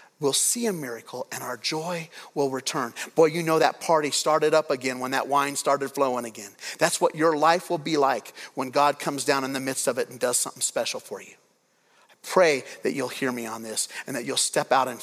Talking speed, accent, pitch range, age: 235 wpm, American, 135-170 Hz, 40-59